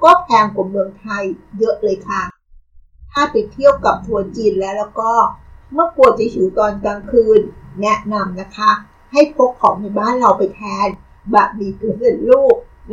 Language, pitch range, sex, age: Thai, 200-255 Hz, female, 60-79